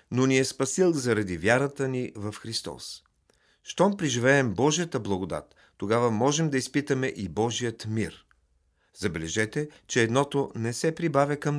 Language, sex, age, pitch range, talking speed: Bulgarian, male, 40-59, 110-145 Hz, 140 wpm